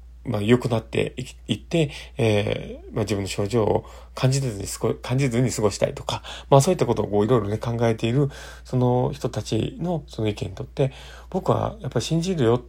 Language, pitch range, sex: Japanese, 100-140 Hz, male